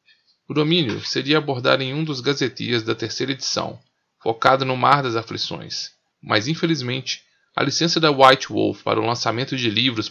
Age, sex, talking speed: 20-39, male, 165 wpm